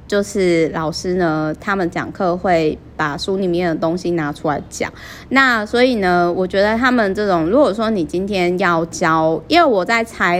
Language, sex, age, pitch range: Chinese, female, 20-39, 170-210 Hz